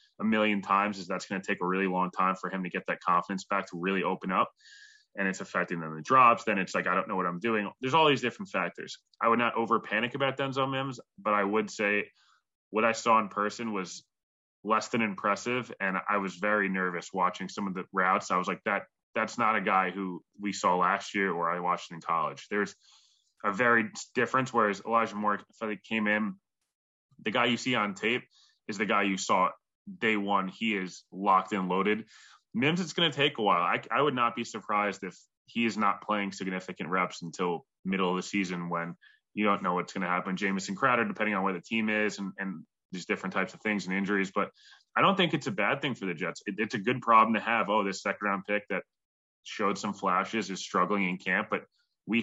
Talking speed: 235 wpm